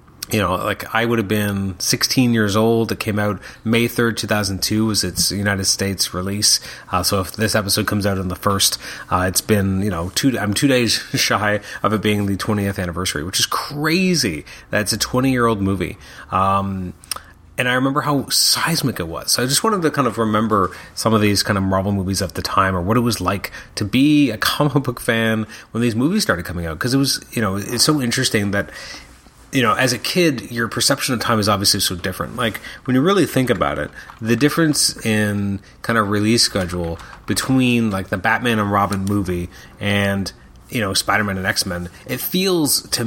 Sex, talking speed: male, 210 wpm